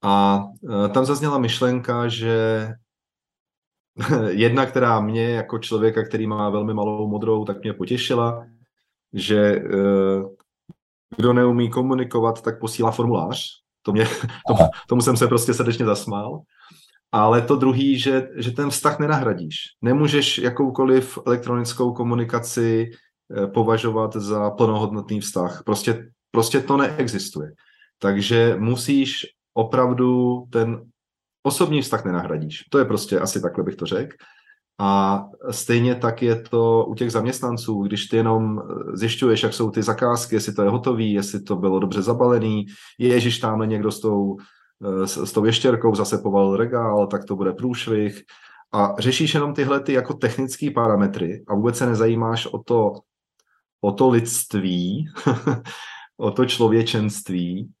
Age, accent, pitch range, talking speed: 30-49, native, 105-125 Hz, 135 wpm